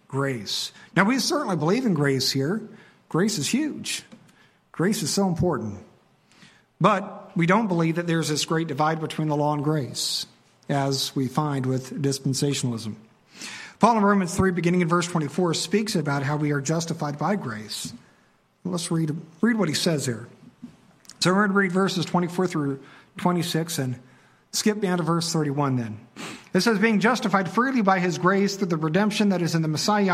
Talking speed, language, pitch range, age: 180 wpm, English, 155-205 Hz, 50-69